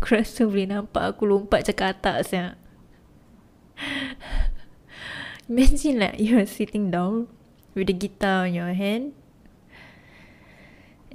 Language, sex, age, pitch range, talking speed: Malay, female, 20-39, 195-235 Hz, 130 wpm